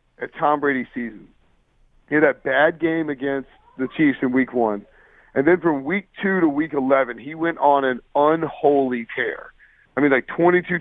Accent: American